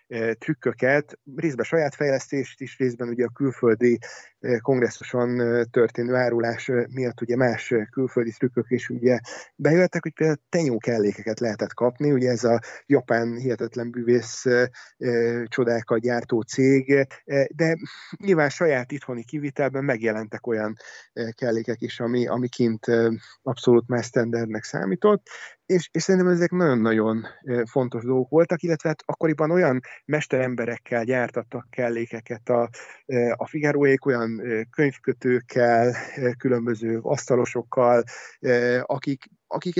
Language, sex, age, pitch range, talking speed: Hungarian, male, 30-49, 120-140 Hz, 110 wpm